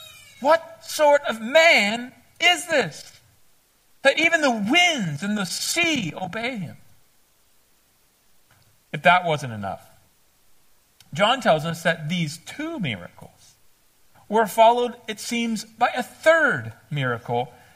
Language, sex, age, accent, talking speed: English, male, 40-59, American, 115 wpm